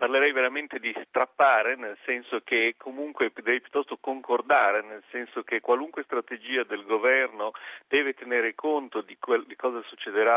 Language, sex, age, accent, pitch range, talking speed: Italian, male, 40-59, native, 110-145 Hz, 150 wpm